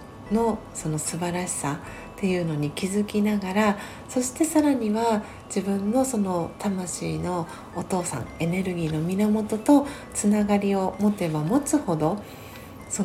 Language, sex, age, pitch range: Japanese, female, 40-59, 165-215 Hz